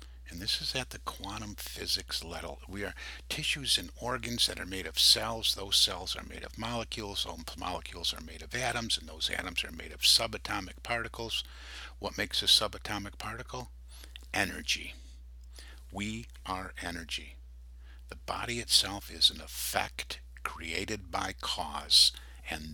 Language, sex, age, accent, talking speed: English, male, 50-69, American, 155 wpm